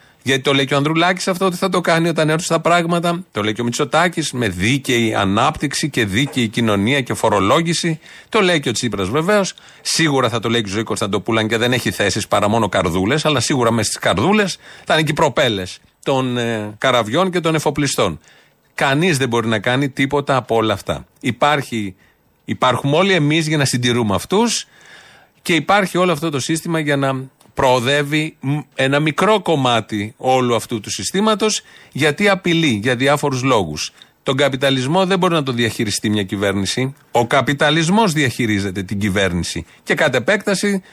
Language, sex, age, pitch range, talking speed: Greek, male, 40-59, 115-165 Hz, 175 wpm